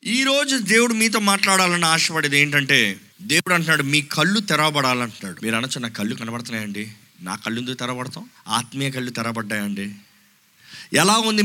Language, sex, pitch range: Telugu, male, 140-210 Hz